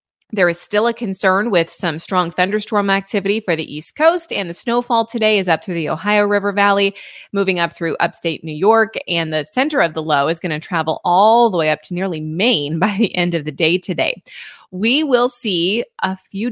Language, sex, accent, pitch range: English, female, American, 165-215 Hz